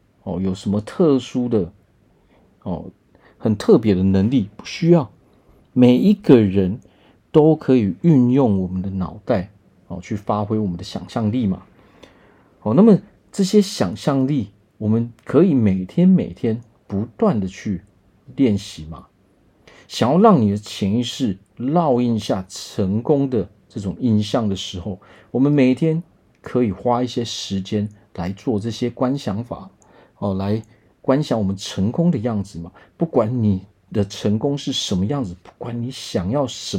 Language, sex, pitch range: Chinese, male, 95-125 Hz